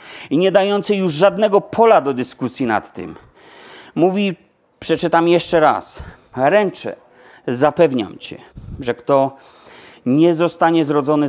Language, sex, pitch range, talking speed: Polish, male, 140-190 Hz, 115 wpm